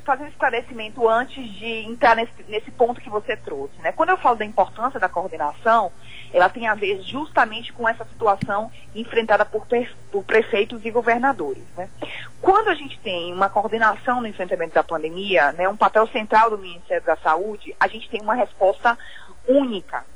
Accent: Brazilian